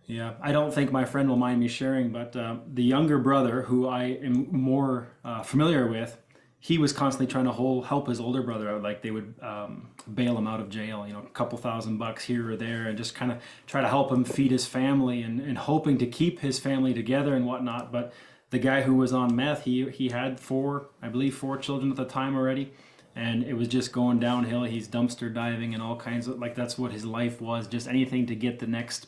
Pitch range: 120-135 Hz